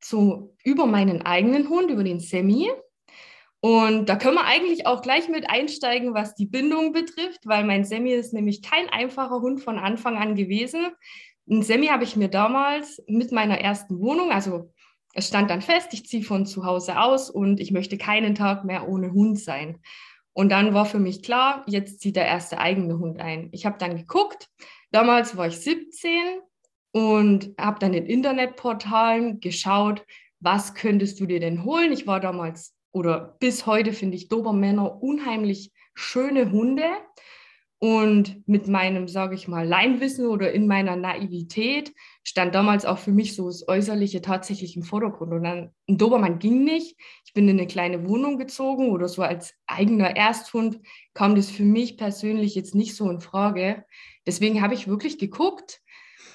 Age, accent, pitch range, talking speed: 20-39, German, 190-250 Hz, 175 wpm